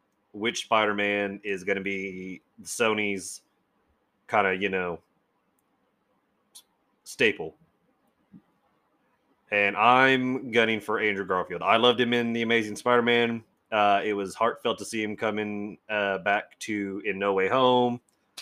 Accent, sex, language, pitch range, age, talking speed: American, male, English, 100-120 Hz, 30-49, 130 wpm